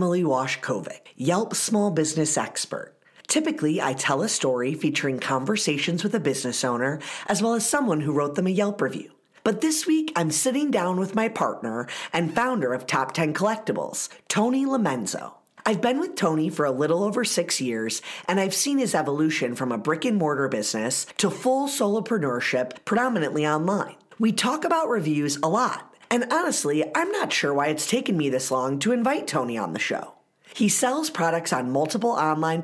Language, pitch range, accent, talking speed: English, 145-220 Hz, American, 180 wpm